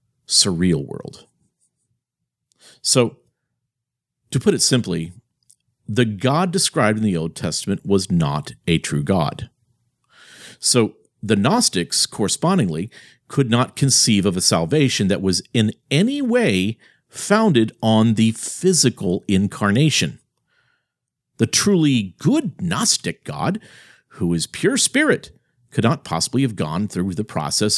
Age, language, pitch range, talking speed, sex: 50-69, English, 105-140 Hz, 120 wpm, male